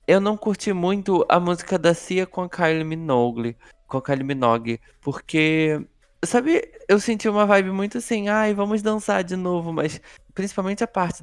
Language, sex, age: Portuguese, male, 20-39